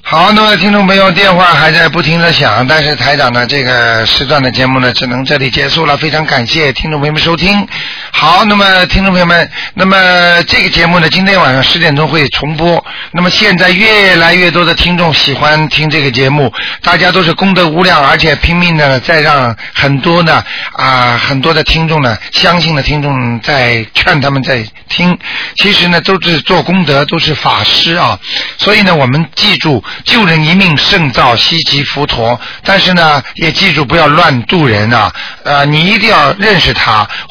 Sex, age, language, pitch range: male, 50-69, Chinese, 140-185 Hz